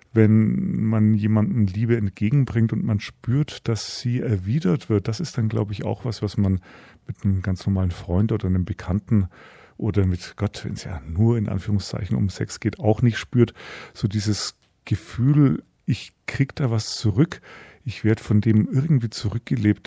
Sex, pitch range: male, 95-115 Hz